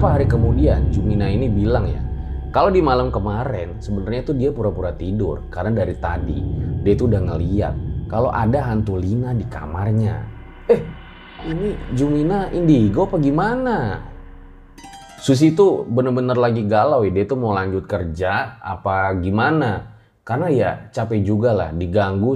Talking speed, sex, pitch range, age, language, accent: 145 wpm, male, 100-130 Hz, 20-39, Indonesian, native